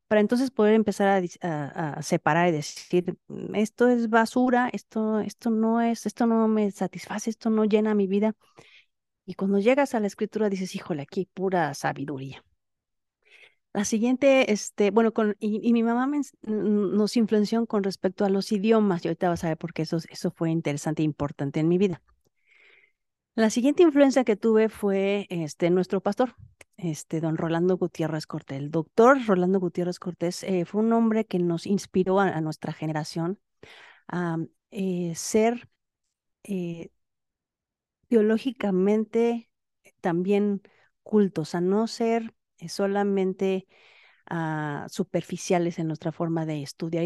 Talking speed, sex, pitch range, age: 145 wpm, female, 165-220 Hz, 40-59